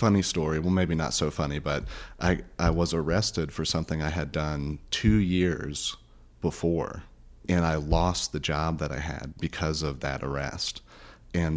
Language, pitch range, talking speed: English, 75-90 Hz, 170 wpm